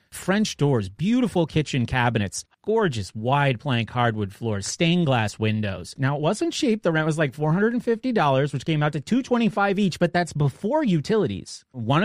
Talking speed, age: 165 wpm, 30-49